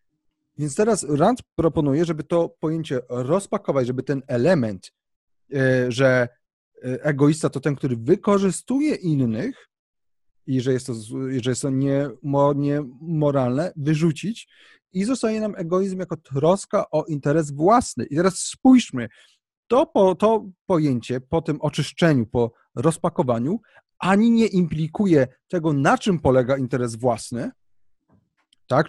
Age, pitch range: 30-49, 135-185 Hz